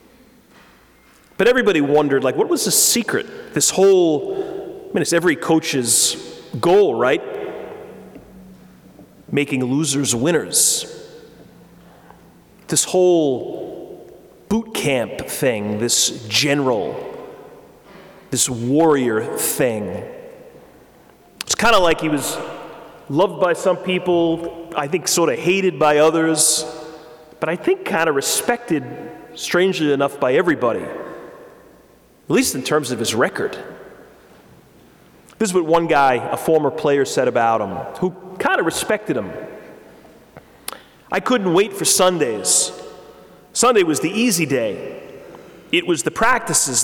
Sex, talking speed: male, 120 wpm